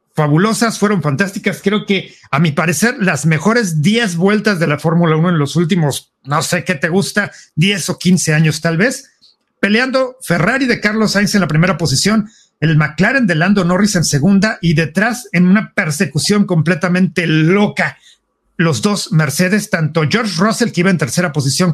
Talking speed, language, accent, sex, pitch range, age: 175 wpm, English, Mexican, male, 160-215 Hz, 50-69